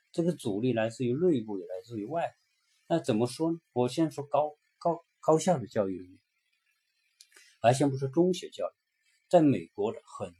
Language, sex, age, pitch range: Chinese, male, 50-69, 110-175 Hz